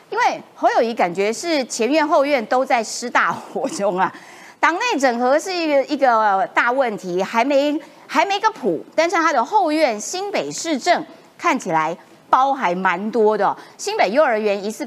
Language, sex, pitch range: Chinese, female, 210-310 Hz